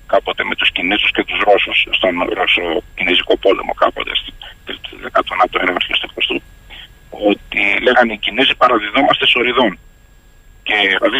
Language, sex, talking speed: Greek, male, 120 wpm